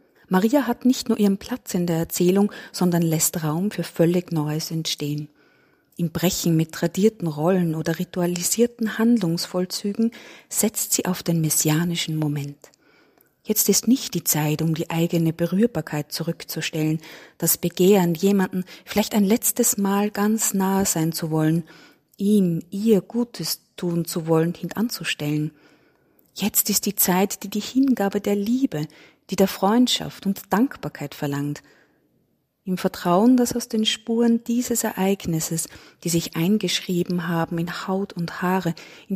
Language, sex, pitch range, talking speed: German, female, 165-205 Hz, 140 wpm